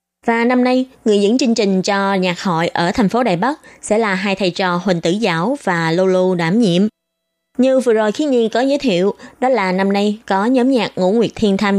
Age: 20-39